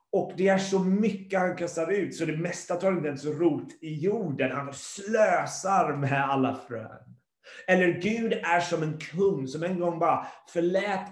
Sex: male